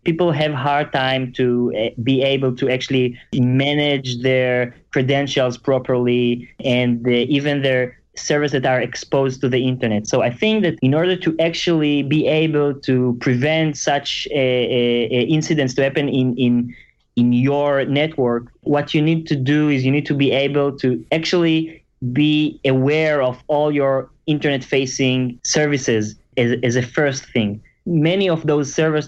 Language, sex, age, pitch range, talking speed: English, male, 20-39, 125-145 Hz, 160 wpm